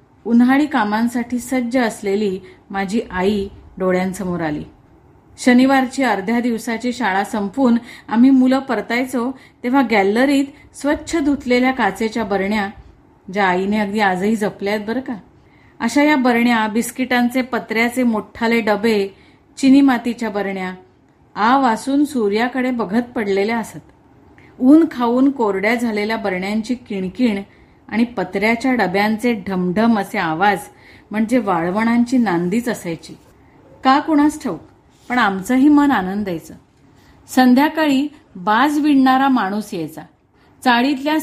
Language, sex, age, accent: Marathi, female, 30-49, native